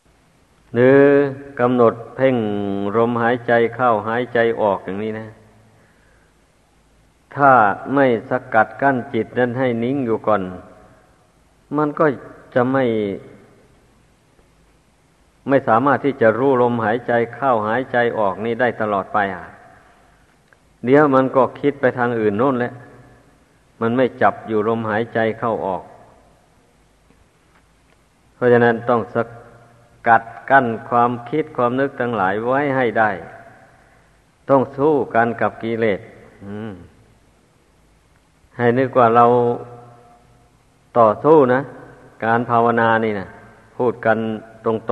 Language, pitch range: Thai, 110-130 Hz